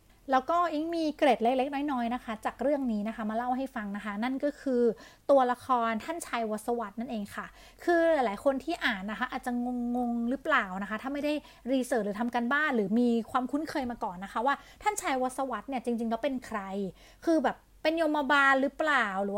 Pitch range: 225-275 Hz